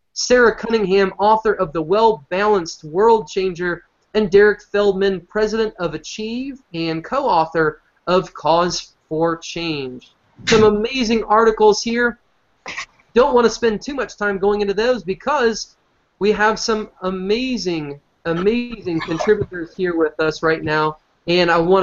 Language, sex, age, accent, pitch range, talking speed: English, male, 30-49, American, 175-220 Hz, 140 wpm